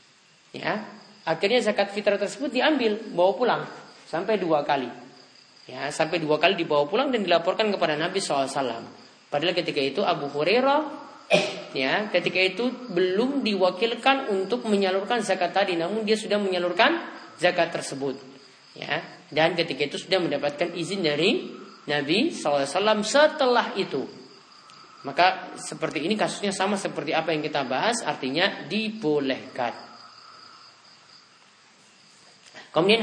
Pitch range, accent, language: 150-215 Hz, native, Indonesian